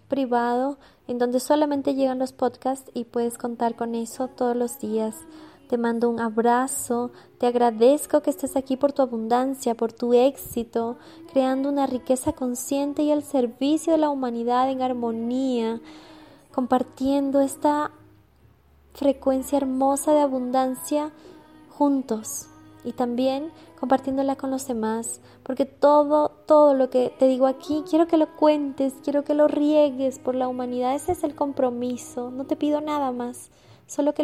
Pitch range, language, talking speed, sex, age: 250-290 Hz, Spanish, 150 wpm, female, 20-39